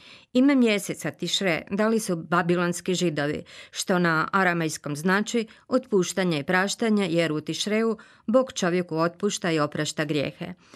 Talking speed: 130 wpm